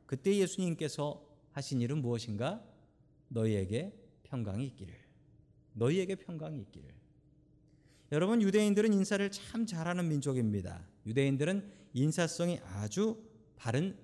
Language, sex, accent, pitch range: Korean, male, native, 115-165 Hz